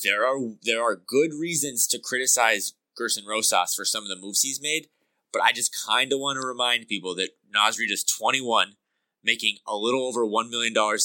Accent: American